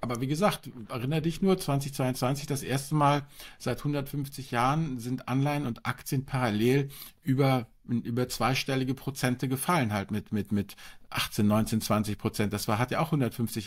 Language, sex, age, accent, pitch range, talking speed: German, male, 50-69, German, 115-145 Hz, 165 wpm